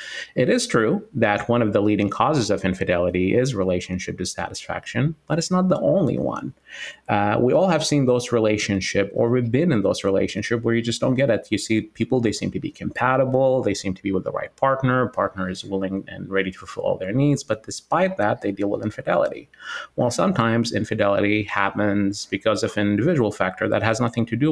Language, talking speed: English, 210 wpm